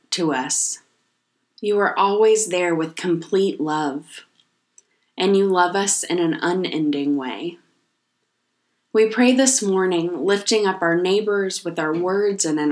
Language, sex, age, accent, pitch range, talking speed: English, female, 20-39, American, 165-200 Hz, 140 wpm